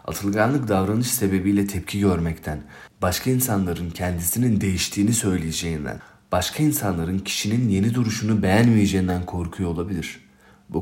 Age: 40-59